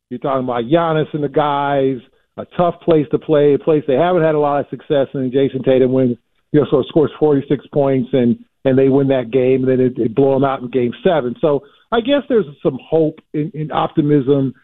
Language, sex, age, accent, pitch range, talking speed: English, male, 50-69, American, 130-155 Hz, 235 wpm